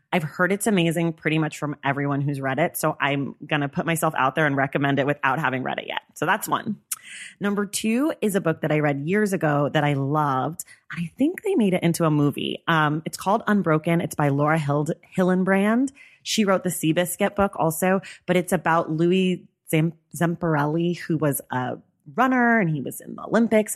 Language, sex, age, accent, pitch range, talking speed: English, female, 30-49, American, 150-185 Hz, 205 wpm